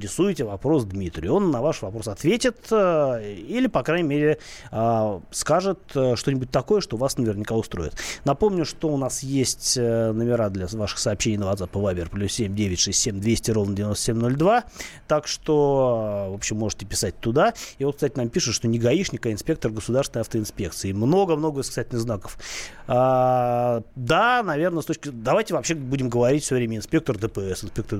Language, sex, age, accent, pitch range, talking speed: Russian, male, 30-49, native, 105-145 Hz, 165 wpm